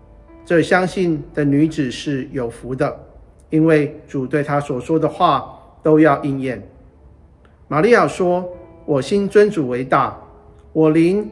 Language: Chinese